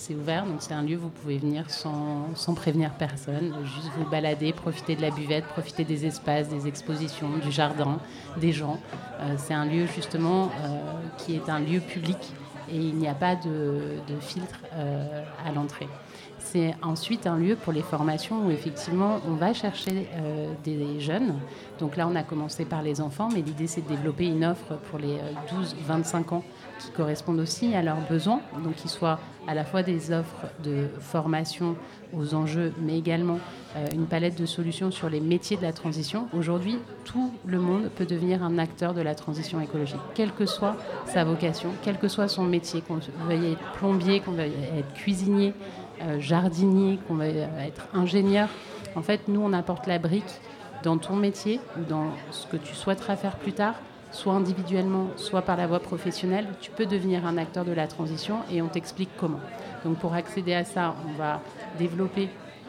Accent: French